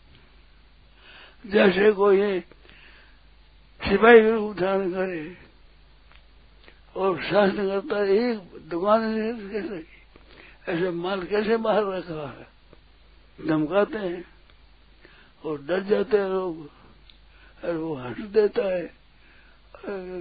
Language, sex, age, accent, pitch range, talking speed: Hindi, male, 60-79, native, 155-210 Hz, 100 wpm